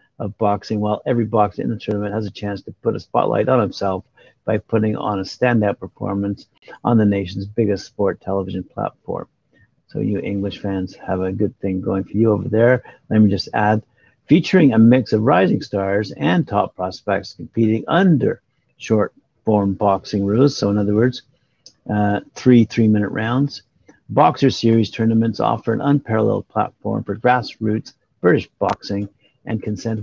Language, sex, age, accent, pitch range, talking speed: English, male, 50-69, American, 100-120 Hz, 170 wpm